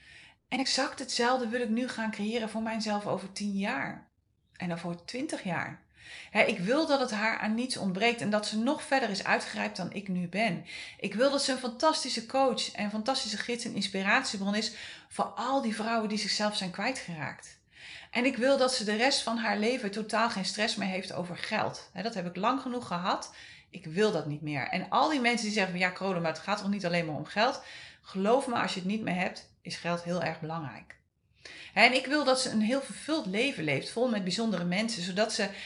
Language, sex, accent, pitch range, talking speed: Dutch, female, Dutch, 190-245 Hz, 225 wpm